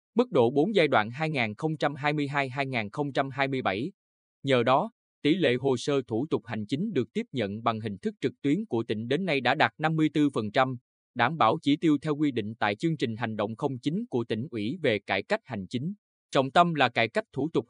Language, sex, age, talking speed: Vietnamese, male, 20-39, 200 wpm